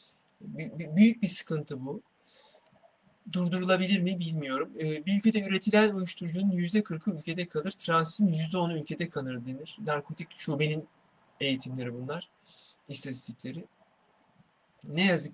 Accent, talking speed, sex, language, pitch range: native, 110 wpm, male, Turkish, 155-200 Hz